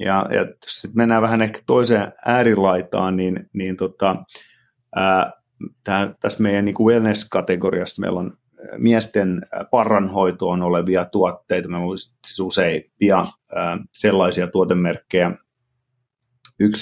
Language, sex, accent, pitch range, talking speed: Finnish, male, native, 95-110 Hz, 110 wpm